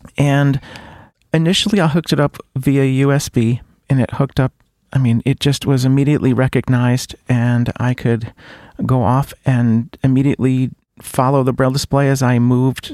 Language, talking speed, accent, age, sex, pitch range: English, 155 wpm, American, 40-59, male, 120-145 Hz